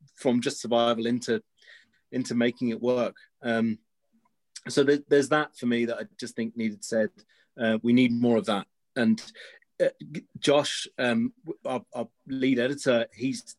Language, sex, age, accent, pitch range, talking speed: English, male, 30-49, British, 115-140 Hz, 160 wpm